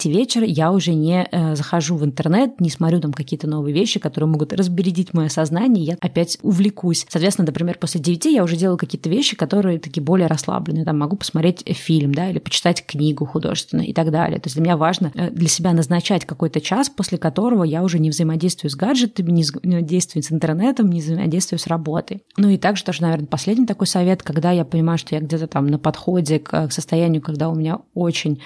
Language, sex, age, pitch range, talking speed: Russian, female, 20-39, 160-185 Hz, 205 wpm